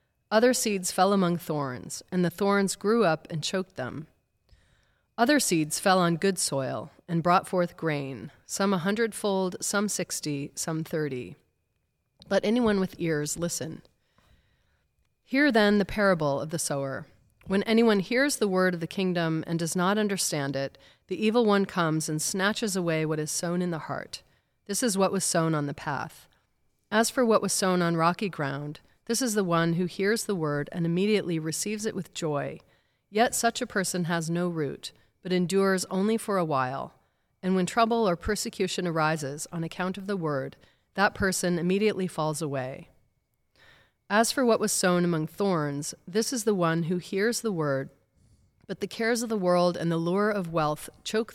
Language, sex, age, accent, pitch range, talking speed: English, female, 30-49, American, 160-205 Hz, 180 wpm